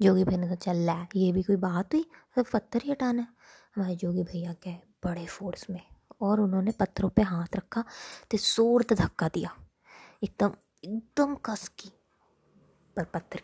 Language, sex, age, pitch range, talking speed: Hindi, female, 20-39, 180-225 Hz, 175 wpm